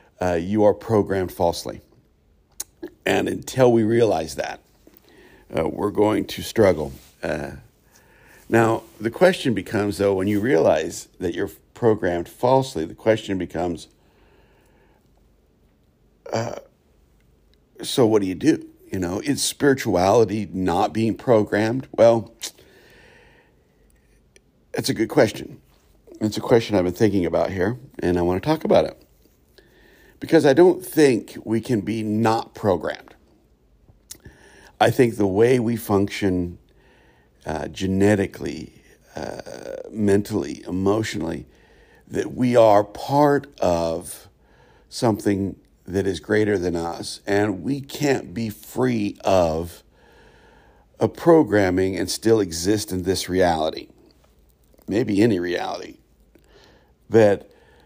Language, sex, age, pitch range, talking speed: English, male, 60-79, 90-115 Hz, 115 wpm